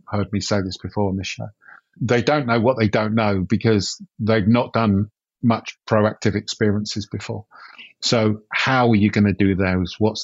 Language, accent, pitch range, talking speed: English, British, 105-125 Hz, 190 wpm